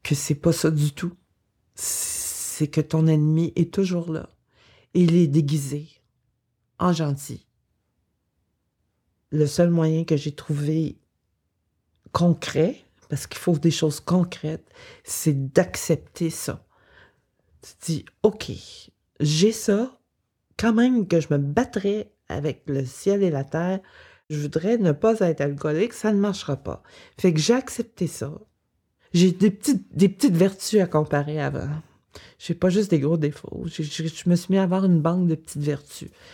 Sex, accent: female, French